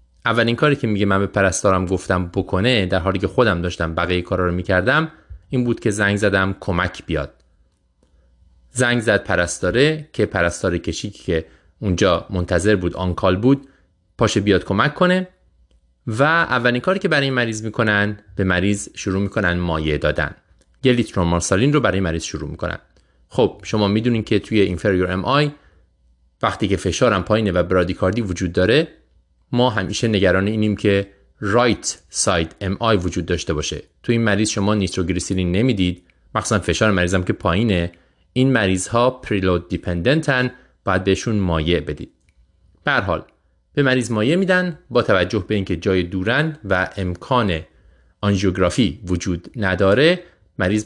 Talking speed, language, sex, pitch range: 145 wpm, Persian, male, 90-110 Hz